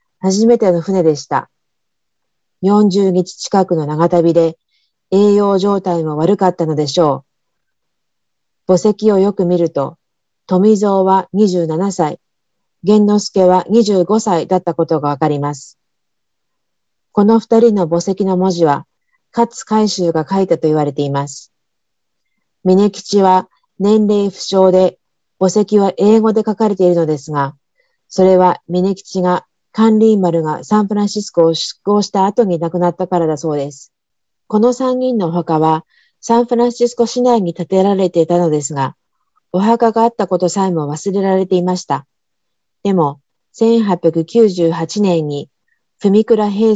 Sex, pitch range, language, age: female, 170-210 Hz, Japanese, 40-59